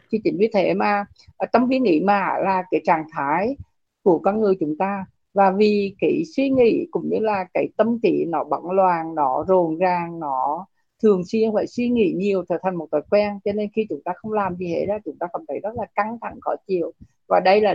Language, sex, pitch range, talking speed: Vietnamese, female, 175-210 Hz, 235 wpm